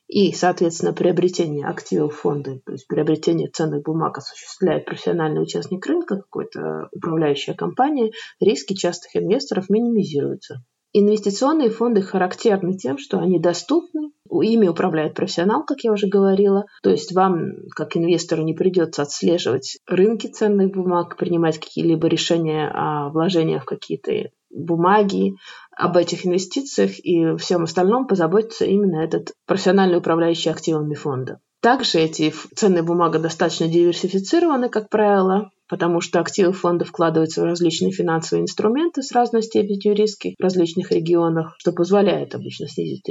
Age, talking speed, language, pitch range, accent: 20-39, 130 wpm, Russian, 165-205 Hz, native